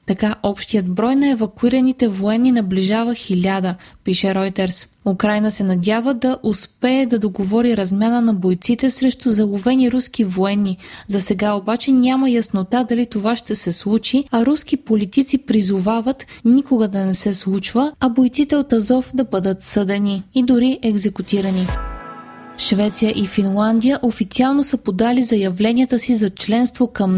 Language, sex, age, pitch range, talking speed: Bulgarian, female, 20-39, 195-250 Hz, 140 wpm